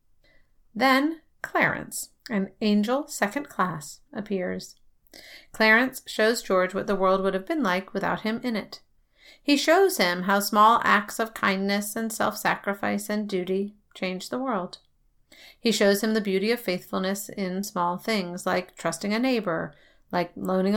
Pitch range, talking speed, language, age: 185-225 Hz, 150 wpm, English, 40-59